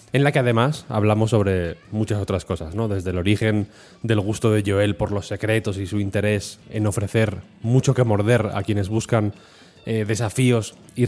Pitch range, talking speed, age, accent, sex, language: 100-115 Hz, 185 wpm, 20-39, Spanish, male, Spanish